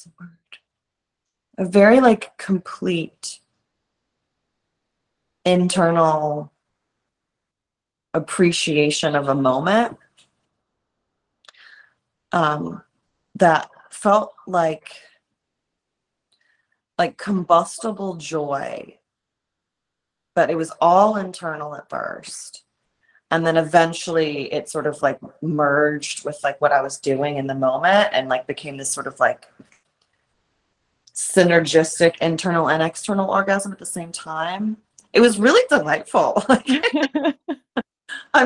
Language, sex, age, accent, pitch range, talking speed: English, female, 30-49, American, 155-210 Hz, 95 wpm